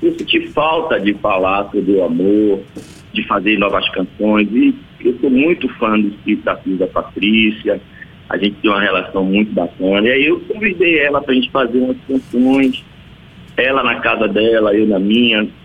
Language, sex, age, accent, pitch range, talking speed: Portuguese, male, 50-69, Brazilian, 110-165 Hz, 175 wpm